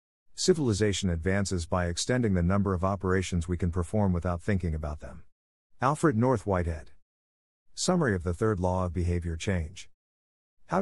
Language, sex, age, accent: English, male, 50-69, American